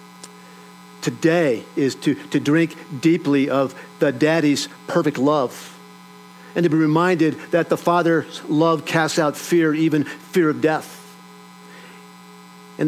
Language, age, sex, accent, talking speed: English, 50-69, male, American, 125 wpm